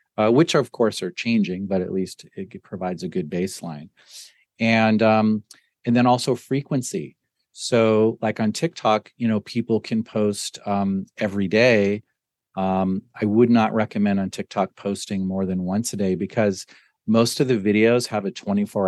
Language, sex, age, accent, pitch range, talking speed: English, male, 40-59, American, 95-115 Hz, 170 wpm